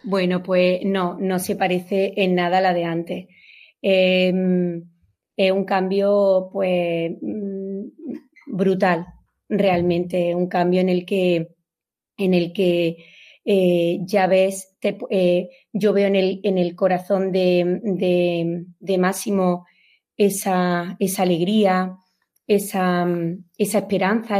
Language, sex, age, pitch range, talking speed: Spanish, female, 30-49, 180-200 Hz, 125 wpm